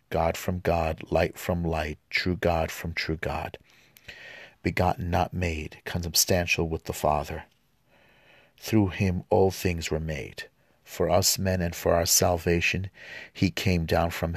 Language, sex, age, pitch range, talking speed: English, male, 50-69, 80-95 Hz, 145 wpm